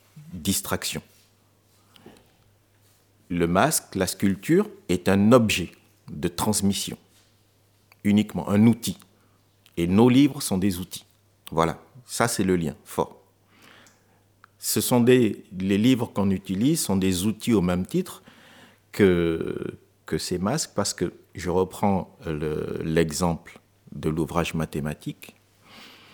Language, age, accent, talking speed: French, 50-69, French, 110 wpm